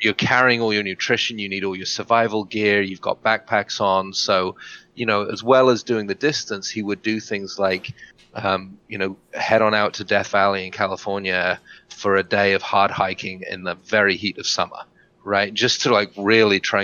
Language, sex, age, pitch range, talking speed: English, male, 30-49, 95-110 Hz, 205 wpm